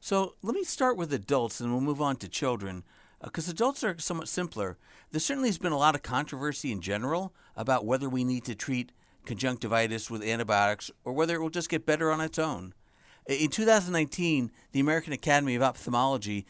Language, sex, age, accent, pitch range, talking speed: English, male, 60-79, American, 120-160 Hz, 195 wpm